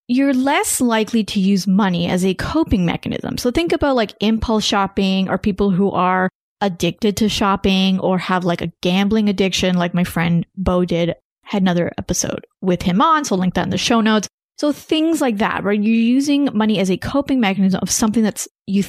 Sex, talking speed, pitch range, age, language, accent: female, 205 wpm, 185-240 Hz, 20-39, English, American